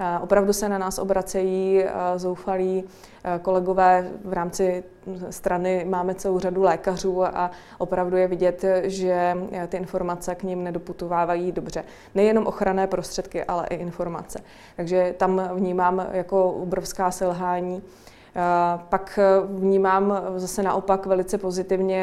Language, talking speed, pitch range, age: Czech, 115 wpm, 180-190 Hz, 20-39